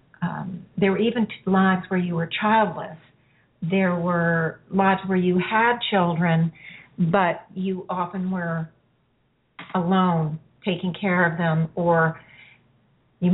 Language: English